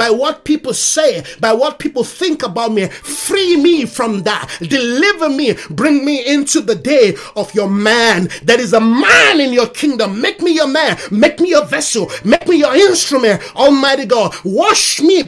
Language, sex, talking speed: English, male, 185 wpm